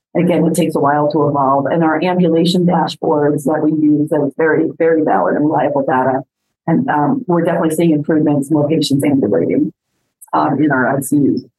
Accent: American